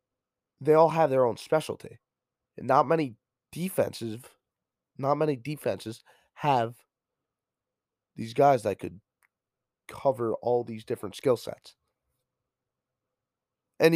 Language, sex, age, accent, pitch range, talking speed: English, male, 20-39, American, 115-160 Hz, 100 wpm